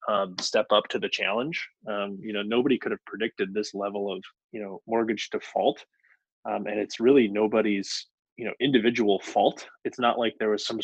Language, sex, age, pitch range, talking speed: English, male, 20-39, 100-110 Hz, 195 wpm